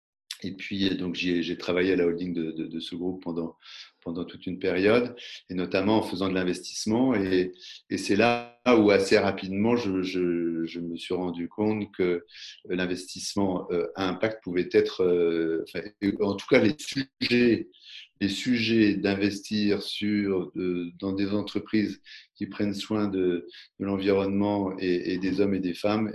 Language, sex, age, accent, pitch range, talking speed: French, male, 40-59, French, 95-110 Hz, 165 wpm